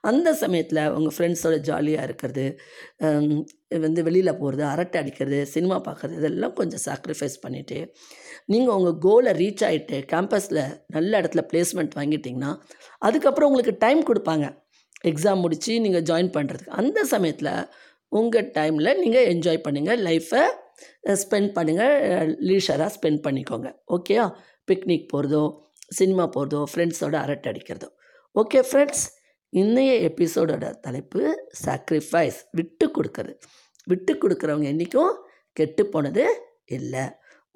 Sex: female